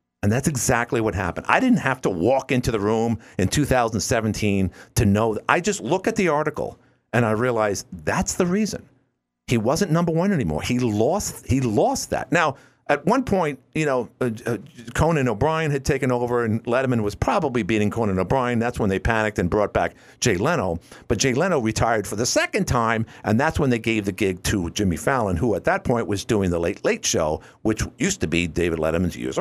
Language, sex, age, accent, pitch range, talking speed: English, male, 50-69, American, 100-140 Hz, 205 wpm